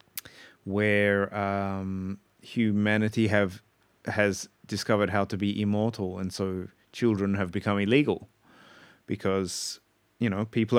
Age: 30-49